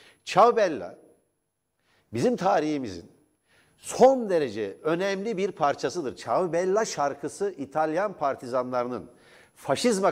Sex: male